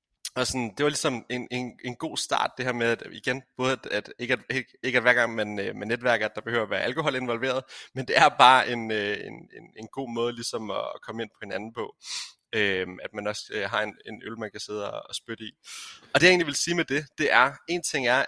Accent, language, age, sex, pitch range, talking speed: native, Danish, 30-49, male, 110-135 Hz, 245 wpm